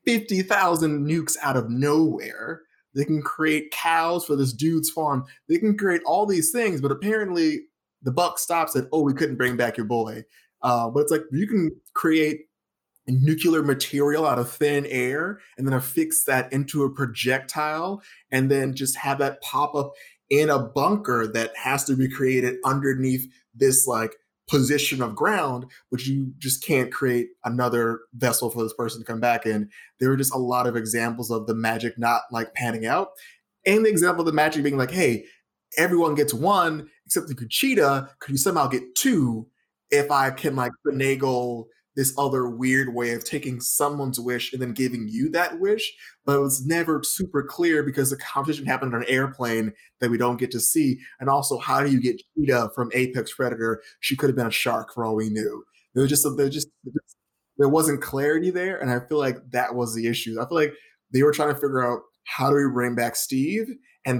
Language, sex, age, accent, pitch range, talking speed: English, male, 20-39, American, 125-155 Hz, 200 wpm